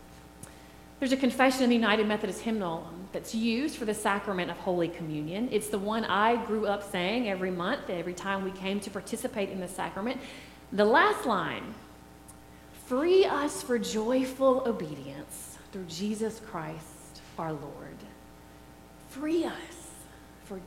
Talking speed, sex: 145 wpm, female